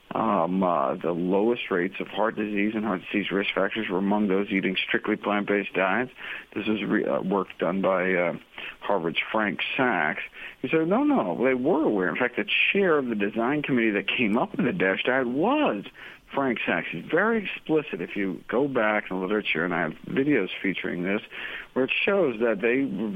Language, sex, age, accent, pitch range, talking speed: English, male, 60-79, American, 105-145 Hz, 205 wpm